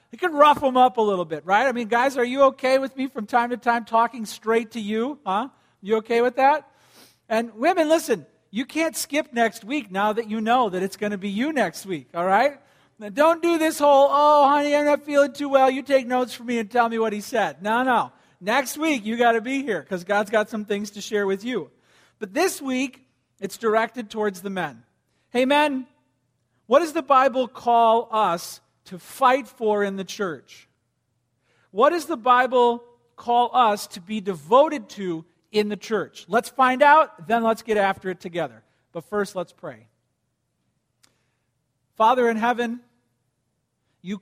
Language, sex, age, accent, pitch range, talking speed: English, male, 50-69, American, 185-250 Hz, 195 wpm